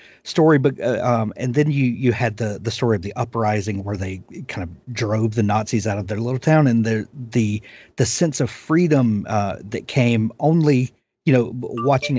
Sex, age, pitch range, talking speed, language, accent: male, 40-59, 105-130 Hz, 200 wpm, English, American